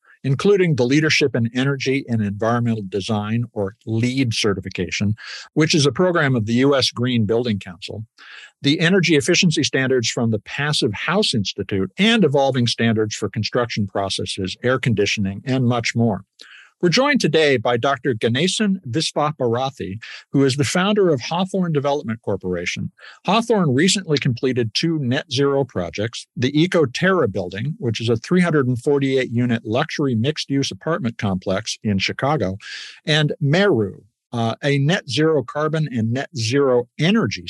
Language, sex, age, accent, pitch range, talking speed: English, male, 50-69, American, 110-150 Hz, 140 wpm